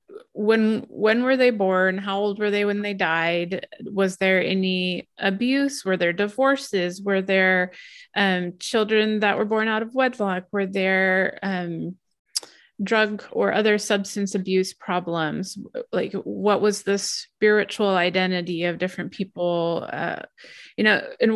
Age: 30-49